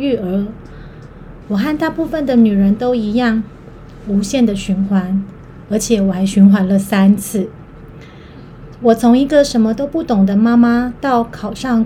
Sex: female